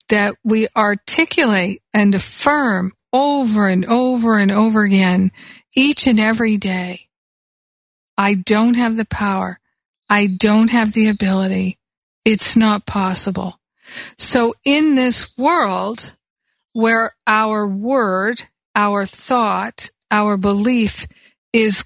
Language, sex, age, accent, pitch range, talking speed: English, female, 50-69, American, 200-235 Hz, 110 wpm